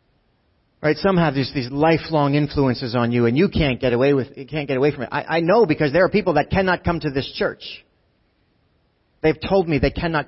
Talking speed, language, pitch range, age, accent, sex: 230 wpm, English, 120-155 Hz, 40-59, American, male